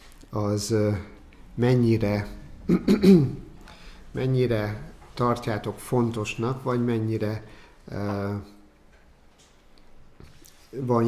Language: Hungarian